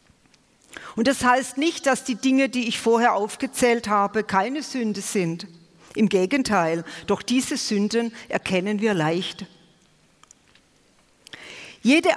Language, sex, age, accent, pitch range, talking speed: German, female, 50-69, German, 200-260 Hz, 120 wpm